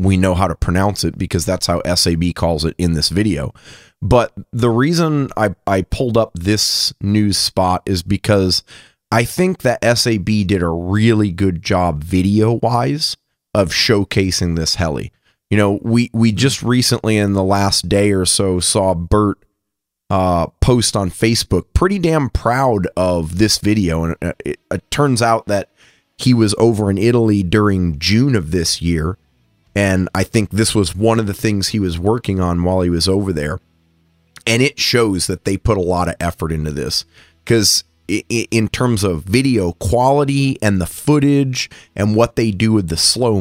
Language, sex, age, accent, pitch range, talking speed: English, male, 30-49, American, 90-115 Hz, 175 wpm